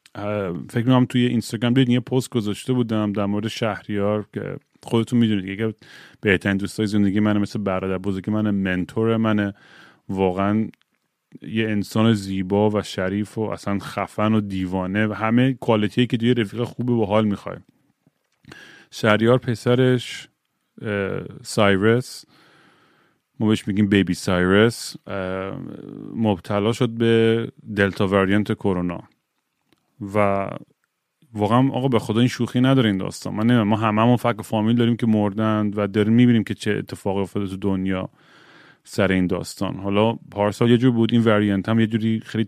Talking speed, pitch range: 150 wpm, 100-120 Hz